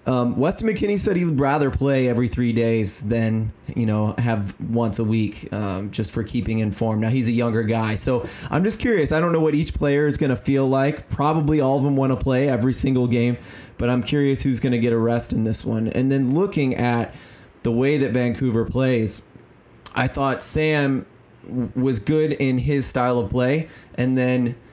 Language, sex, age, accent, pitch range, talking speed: English, male, 20-39, American, 115-135 Hz, 205 wpm